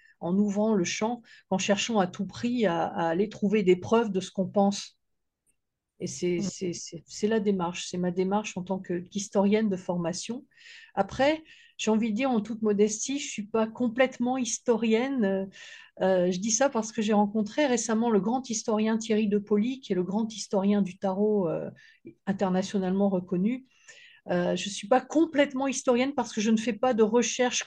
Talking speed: 180 wpm